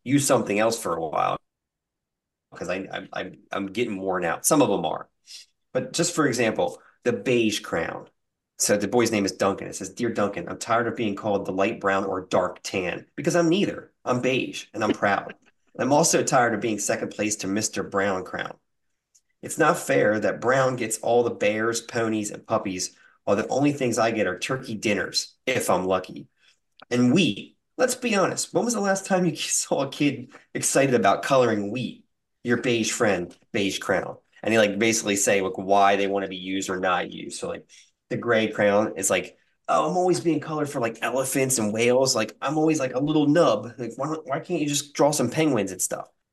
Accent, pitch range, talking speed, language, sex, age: American, 100-140 Hz, 205 wpm, English, male, 30-49